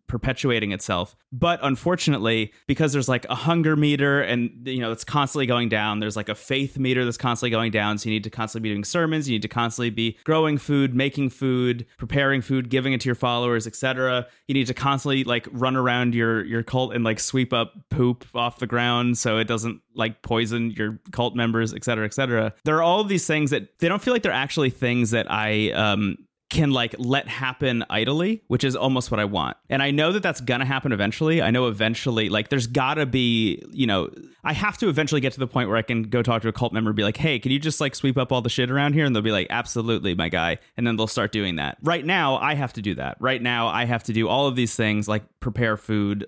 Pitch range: 110-135 Hz